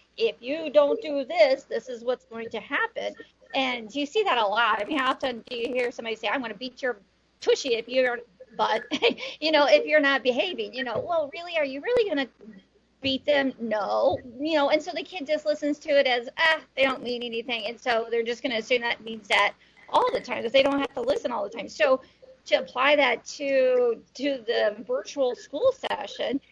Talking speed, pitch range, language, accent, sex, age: 230 wpm, 240-300 Hz, English, American, female, 40-59